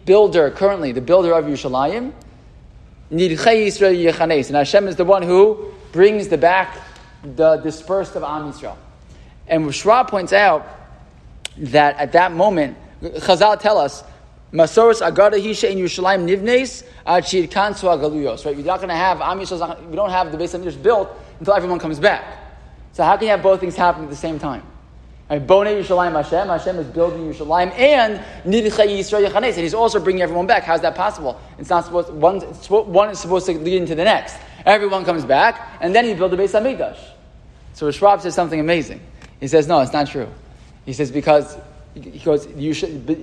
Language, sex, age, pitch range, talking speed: English, male, 20-39, 150-195 Hz, 170 wpm